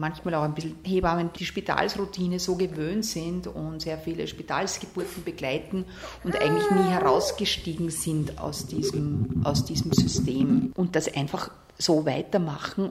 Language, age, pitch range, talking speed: German, 40-59, 150-180 Hz, 135 wpm